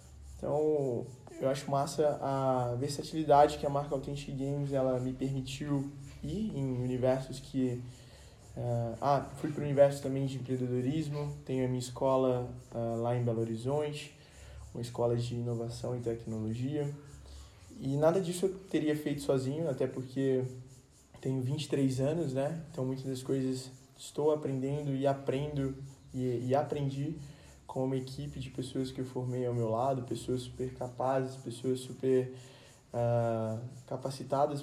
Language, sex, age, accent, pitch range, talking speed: Gujarati, male, 20-39, Brazilian, 130-145 Hz, 145 wpm